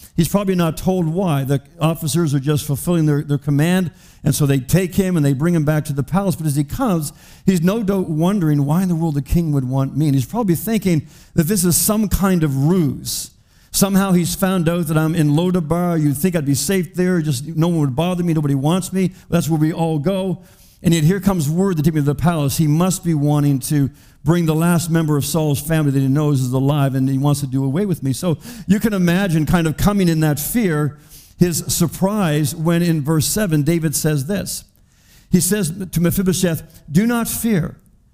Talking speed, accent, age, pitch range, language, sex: 225 wpm, American, 50-69, 145-180 Hz, English, male